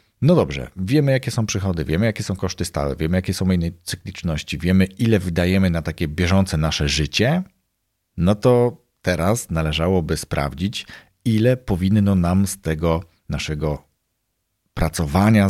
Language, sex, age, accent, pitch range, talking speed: Polish, male, 40-59, native, 80-100 Hz, 140 wpm